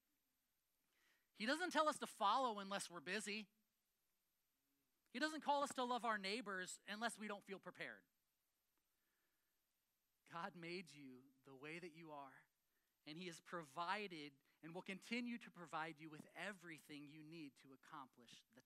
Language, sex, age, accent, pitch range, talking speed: English, male, 30-49, American, 155-210 Hz, 150 wpm